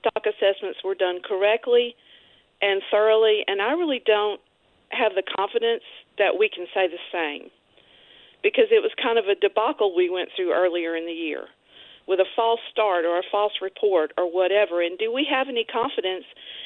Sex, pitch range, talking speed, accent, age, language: female, 185-285 Hz, 180 wpm, American, 50-69, English